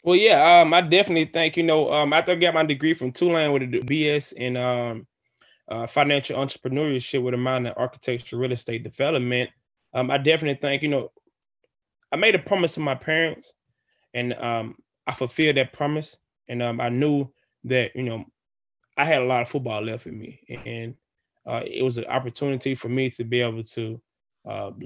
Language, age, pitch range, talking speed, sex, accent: English, 20-39, 125-150 Hz, 195 wpm, male, American